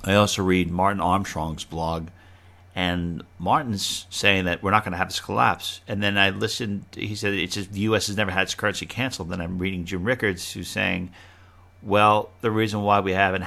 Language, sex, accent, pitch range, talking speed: English, male, American, 90-105 Hz, 205 wpm